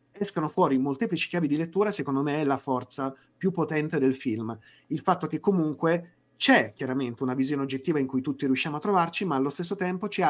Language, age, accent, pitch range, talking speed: Italian, 30-49, native, 130-175 Hz, 205 wpm